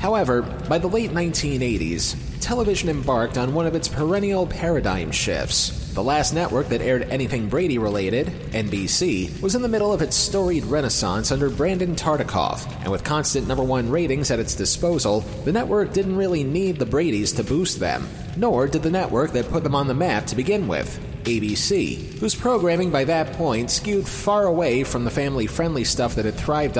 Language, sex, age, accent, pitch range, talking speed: English, male, 30-49, American, 120-175 Hz, 180 wpm